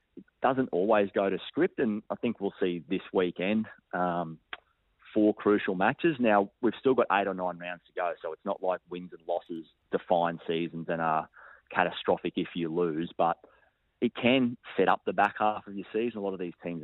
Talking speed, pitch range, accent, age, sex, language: 205 wpm, 85-105 Hz, Australian, 30-49, male, English